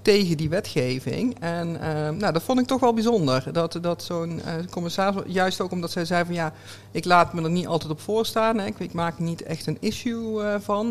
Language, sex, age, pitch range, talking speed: Dutch, male, 50-69, 145-175 Hz, 235 wpm